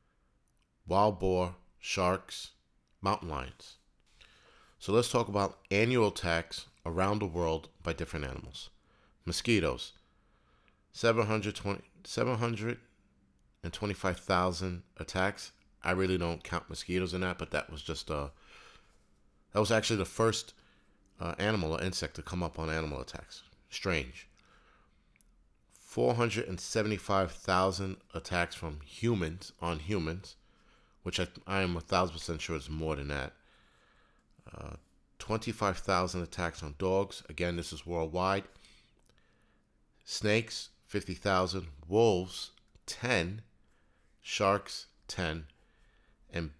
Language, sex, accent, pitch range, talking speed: English, male, American, 80-100 Hz, 105 wpm